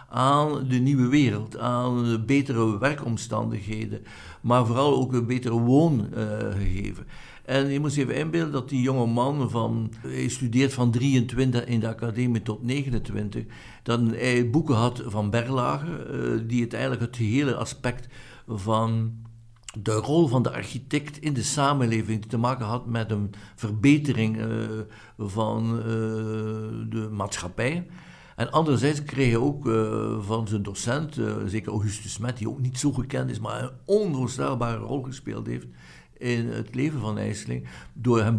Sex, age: male, 60-79